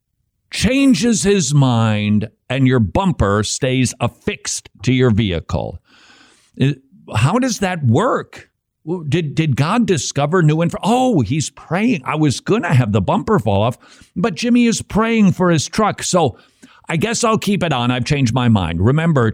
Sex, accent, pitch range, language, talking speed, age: male, American, 115-170 Hz, English, 160 wpm, 50-69